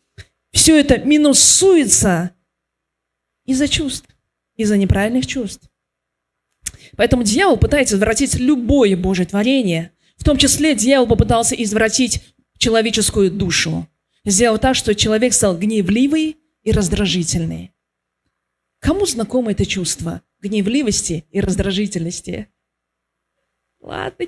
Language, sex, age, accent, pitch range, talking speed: Russian, female, 20-39, native, 180-290 Hz, 95 wpm